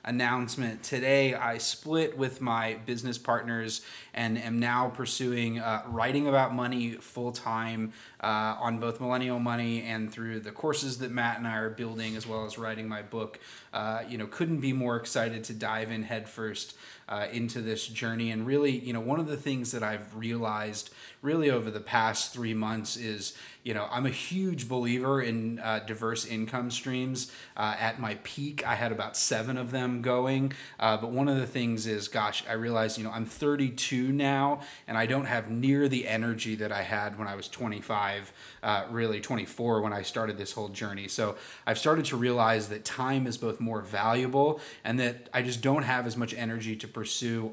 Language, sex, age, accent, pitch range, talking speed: English, male, 20-39, American, 110-125 Hz, 195 wpm